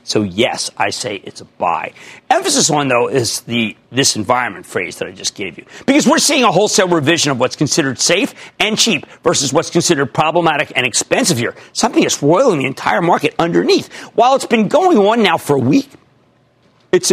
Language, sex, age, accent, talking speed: English, male, 50-69, American, 195 wpm